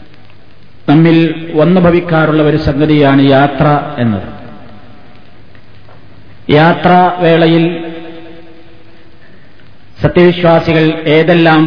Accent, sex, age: native, male, 50-69